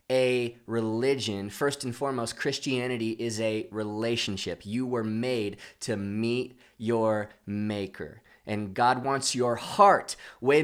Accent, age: American, 20-39